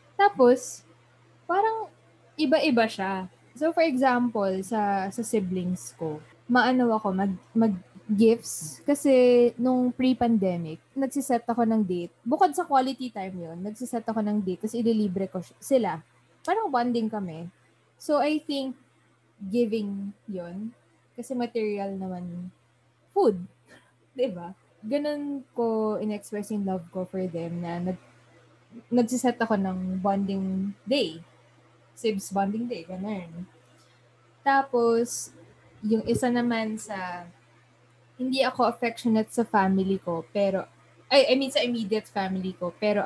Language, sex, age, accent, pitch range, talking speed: Filipino, female, 20-39, native, 190-250 Hz, 120 wpm